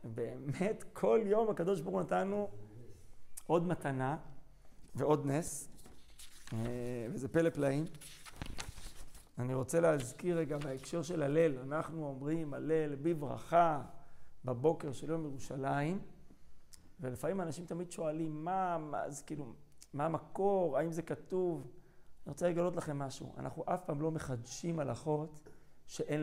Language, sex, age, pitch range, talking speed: Hebrew, male, 40-59, 135-170 Hz, 120 wpm